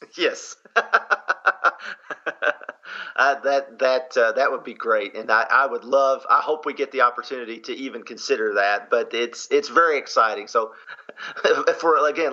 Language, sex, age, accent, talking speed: English, male, 40-59, American, 155 wpm